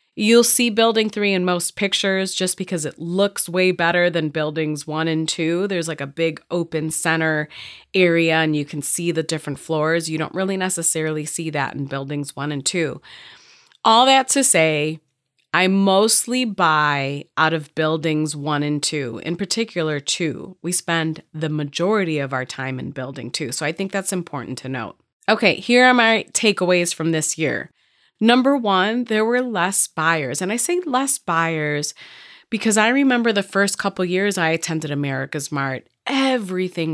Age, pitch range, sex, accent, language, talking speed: 30-49, 150-195 Hz, female, American, English, 175 wpm